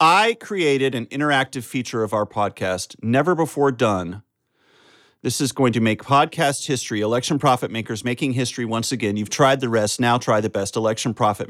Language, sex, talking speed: English, male, 185 wpm